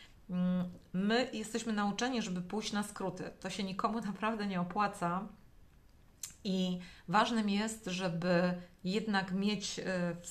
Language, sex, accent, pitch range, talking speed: Polish, female, native, 175-210 Hz, 115 wpm